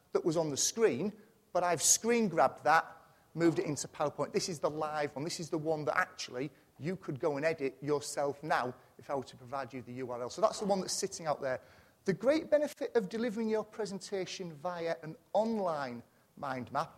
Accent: British